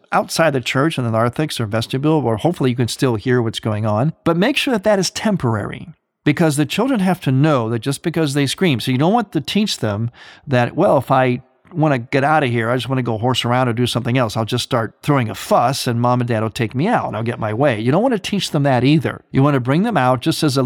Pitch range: 120-165 Hz